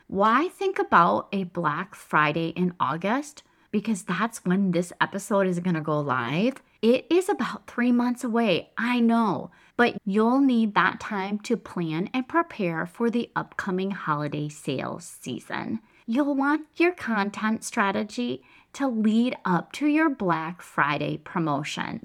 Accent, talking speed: American, 145 wpm